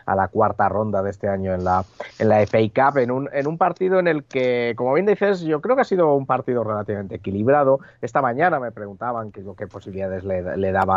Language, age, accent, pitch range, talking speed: Spanish, 30-49, Spanish, 95-120 Hz, 235 wpm